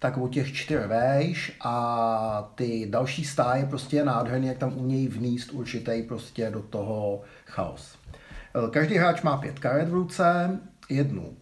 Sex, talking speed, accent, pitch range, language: male, 150 wpm, native, 115-145 Hz, Czech